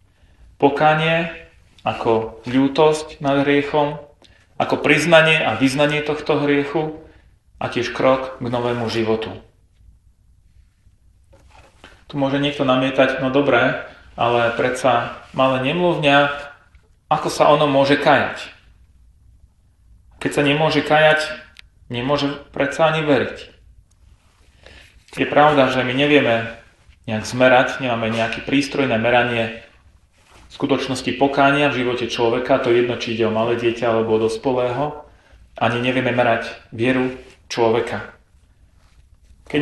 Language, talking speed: Slovak, 110 wpm